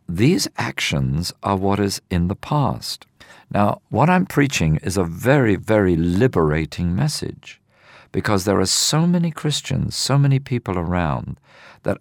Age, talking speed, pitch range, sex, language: 50-69, 145 wpm, 95-140 Hz, male, English